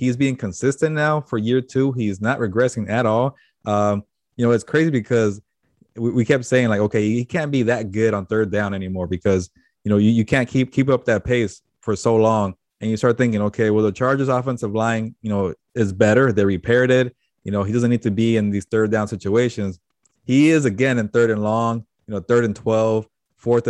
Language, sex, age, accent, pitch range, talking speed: English, male, 20-39, American, 105-125 Hz, 225 wpm